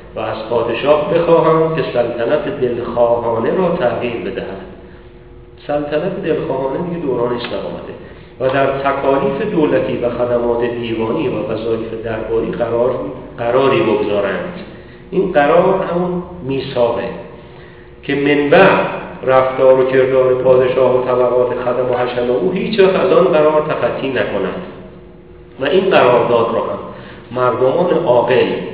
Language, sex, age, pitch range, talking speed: Persian, male, 40-59, 120-165 Hz, 120 wpm